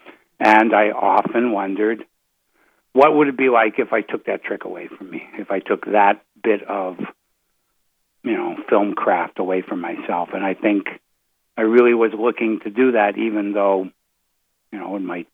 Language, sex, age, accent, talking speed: English, male, 60-79, American, 180 wpm